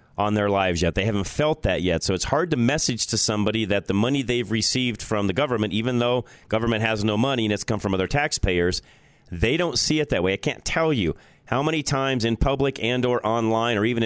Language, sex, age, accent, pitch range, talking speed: English, male, 40-59, American, 105-135 Hz, 240 wpm